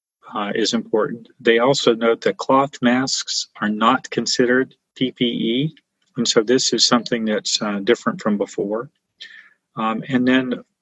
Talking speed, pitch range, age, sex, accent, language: 145 wpm, 110-135 Hz, 40-59, male, American, English